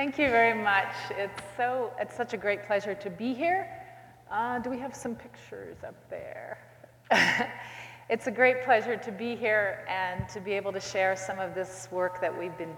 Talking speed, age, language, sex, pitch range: 195 wpm, 40-59, English, female, 185-235 Hz